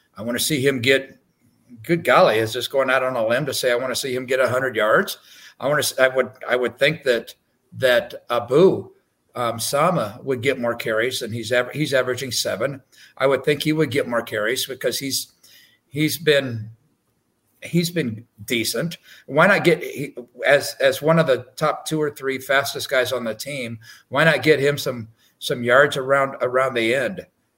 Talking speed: 200 wpm